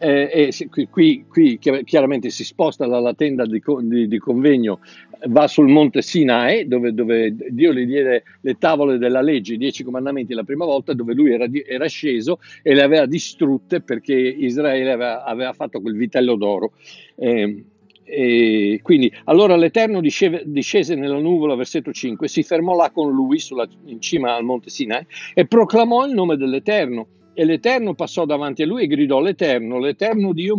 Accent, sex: native, male